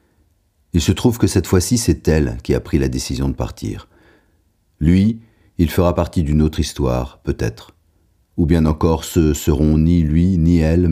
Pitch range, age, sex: 75-95 Hz, 40-59, male